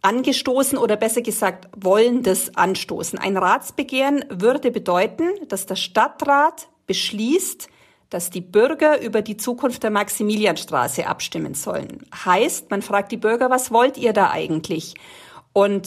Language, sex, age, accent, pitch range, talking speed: German, female, 40-59, German, 200-270 Hz, 135 wpm